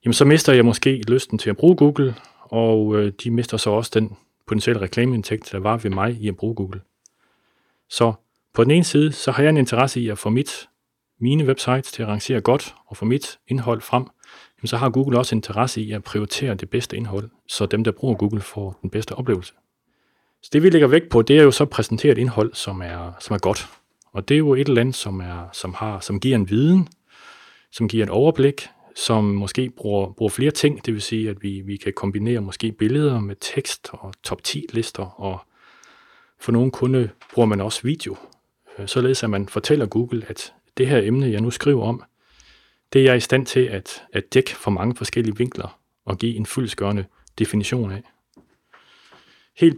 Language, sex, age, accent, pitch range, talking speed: Danish, male, 30-49, native, 105-130 Hz, 205 wpm